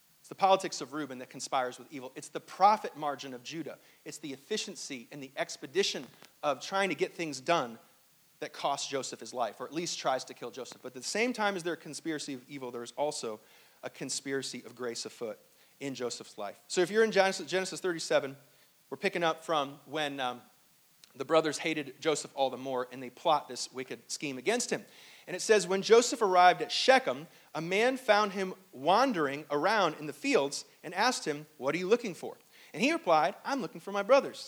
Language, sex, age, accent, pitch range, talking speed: English, male, 40-59, American, 135-180 Hz, 210 wpm